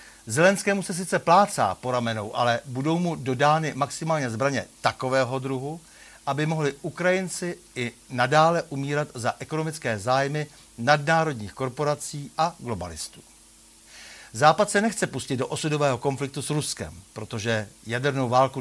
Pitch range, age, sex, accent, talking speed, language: 120-165 Hz, 60-79, male, native, 125 wpm, Czech